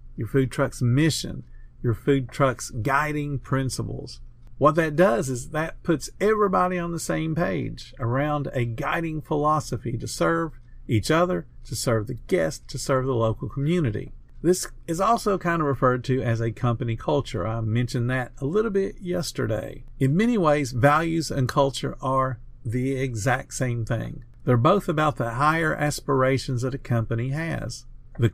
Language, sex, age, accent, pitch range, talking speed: English, male, 50-69, American, 120-150 Hz, 165 wpm